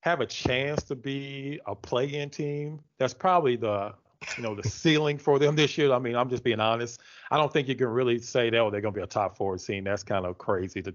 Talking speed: 260 wpm